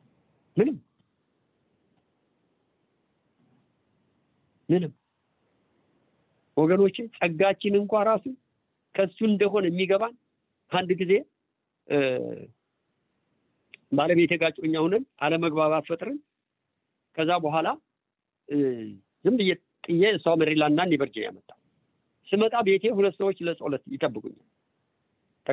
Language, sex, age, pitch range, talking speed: English, male, 50-69, 150-200 Hz, 50 wpm